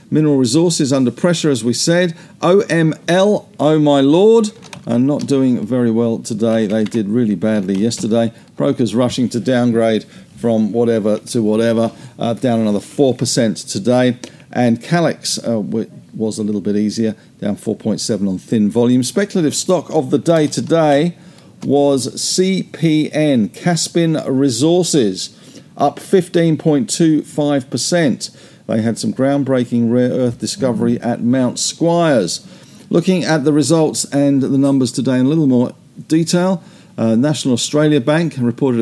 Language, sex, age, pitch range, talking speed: English, male, 50-69, 115-155 Hz, 135 wpm